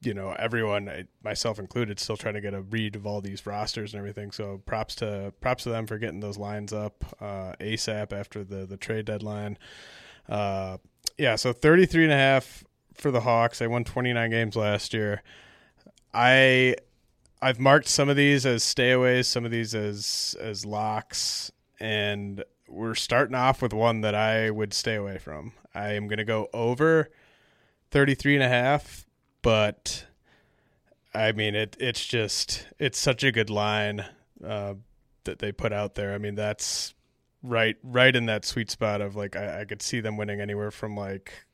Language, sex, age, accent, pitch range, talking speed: English, male, 30-49, American, 105-125 Hz, 185 wpm